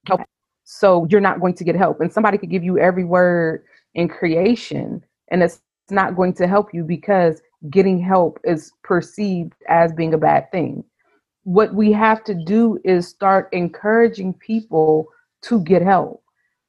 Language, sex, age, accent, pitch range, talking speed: English, female, 30-49, American, 175-205 Hz, 165 wpm